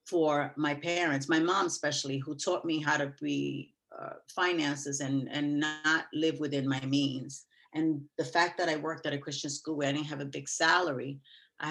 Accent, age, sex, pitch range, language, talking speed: American, 40-59, female, 145-170 Hz, English, 200 wpm